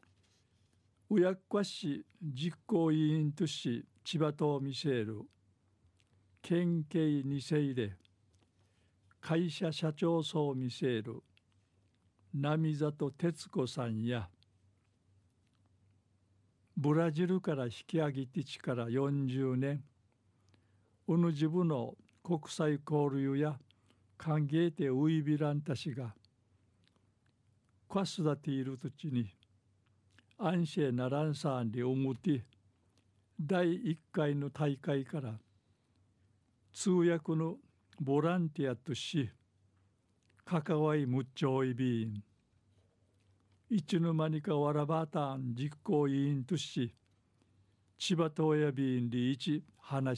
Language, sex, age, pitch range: Japanese, male, 60-79, 100-150 Hz